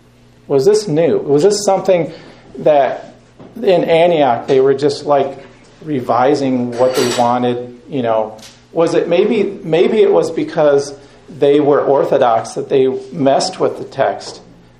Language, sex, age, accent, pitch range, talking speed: English, male, 40-59, American, 125-185 Hz, 140 wpm